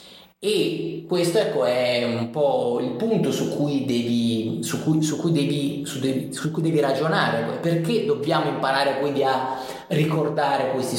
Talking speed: 105 wpm